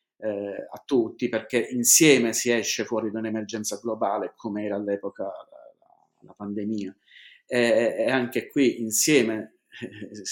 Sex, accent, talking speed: male, native, 130 wpm